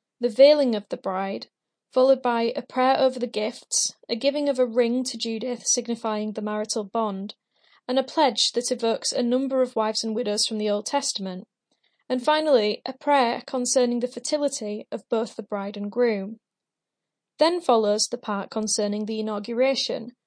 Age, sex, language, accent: 10-29, female, English, British